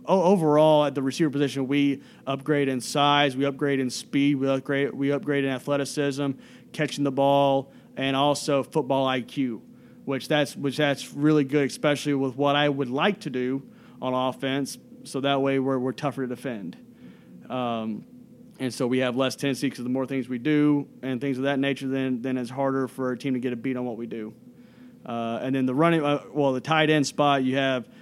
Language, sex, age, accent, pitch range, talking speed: English, male, 30-49, American, 130-145 Hz, 205 wpm